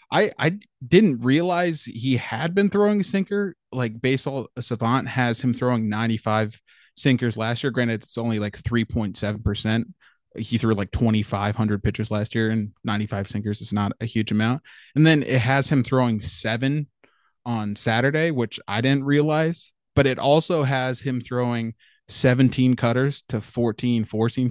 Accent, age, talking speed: American, 20-39, 155 wpm